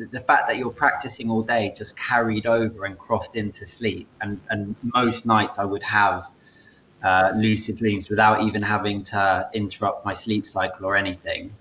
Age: 20-39